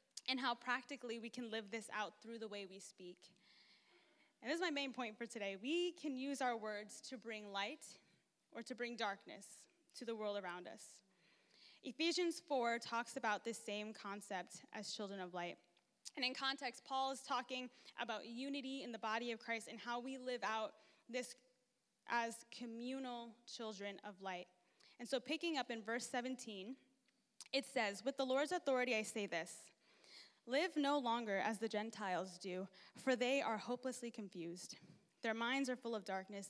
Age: 10-29